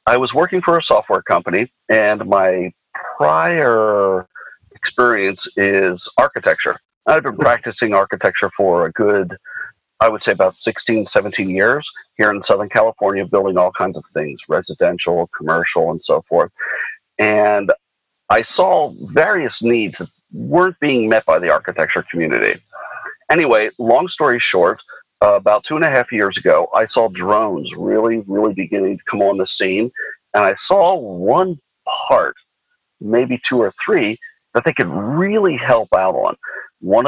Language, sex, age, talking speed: English, male, 40-59, 150 wpm